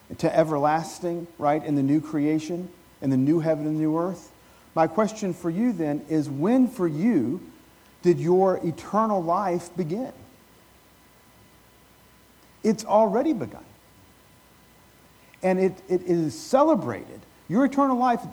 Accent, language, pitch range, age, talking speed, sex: American, English, 175-250 Hz, 50-69, 130 wpm, male